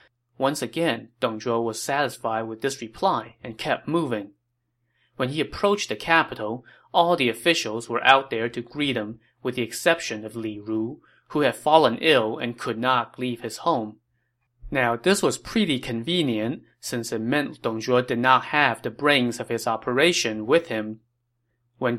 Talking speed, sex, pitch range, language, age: 170 wpm, male, 115-135 Hz, English, 30-49